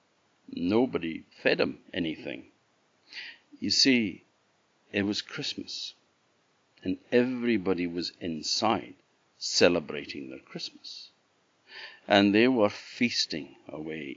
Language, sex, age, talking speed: English, male, 60-79, 90 wpm